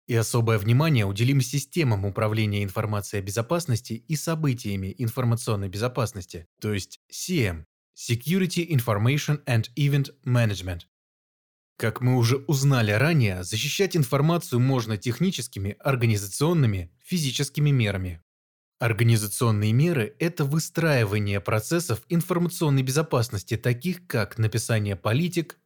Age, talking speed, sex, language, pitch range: 20-39, 105 wpm, male, Russian, 110-145 Hz